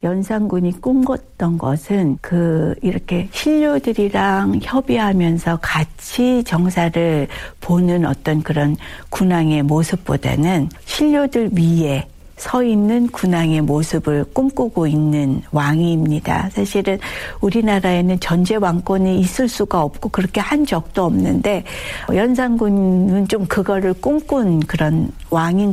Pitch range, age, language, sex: 160-215 Hz, 60-79, Korean, female